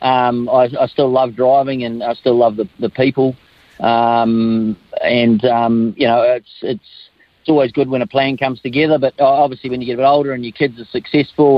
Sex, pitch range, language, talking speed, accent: male, 115-130 Hz, English, 210 wpm, Australian